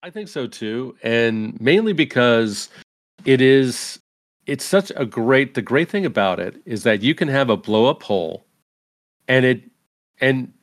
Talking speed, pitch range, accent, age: 170 wpm, 115-145 Hz, American, 40-59